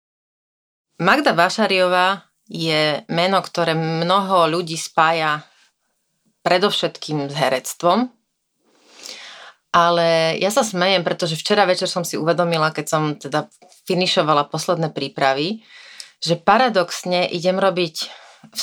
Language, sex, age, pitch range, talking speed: Slovak, female, 30-49, 155-185 Hz, 105 wpm